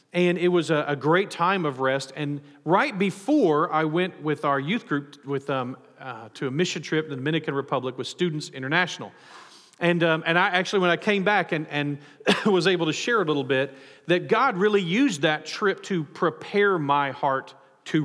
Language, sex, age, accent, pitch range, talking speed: English, male, 40-59, American, 140-180 Hz, 200 wpm